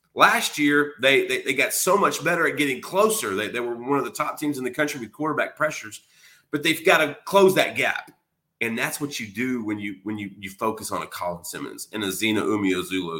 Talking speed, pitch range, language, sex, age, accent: 235 wpm, 110-160 Hz, English, male, 30-49, American